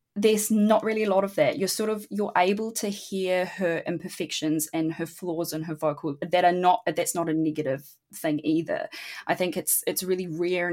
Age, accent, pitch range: 20-39, Australian, 160-205 Hz